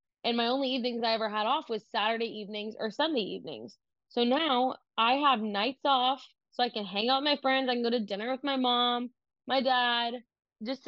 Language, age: English, 20-39